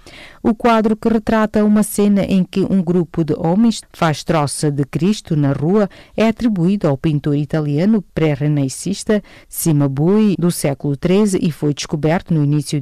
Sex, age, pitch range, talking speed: female, 40-59, 145-190 Hz, 155 wpm